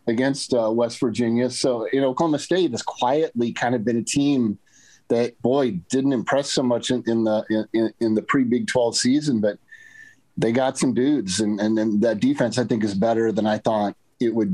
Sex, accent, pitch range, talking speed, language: male, American, 110-135 Hz, 205 wpm, English